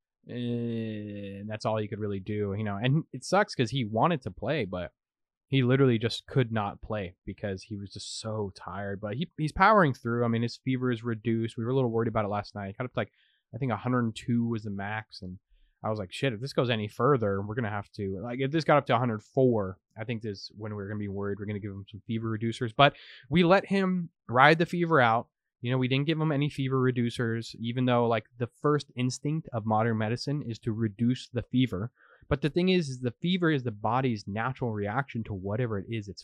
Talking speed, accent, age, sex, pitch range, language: 240 wpm, American, 20-39, male, 110-140 Hz, English